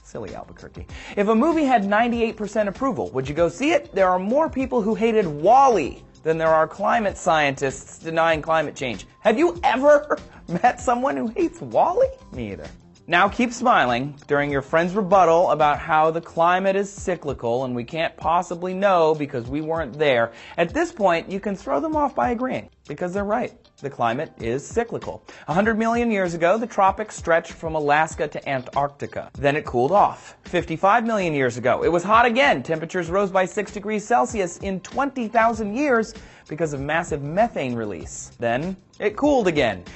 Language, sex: English, male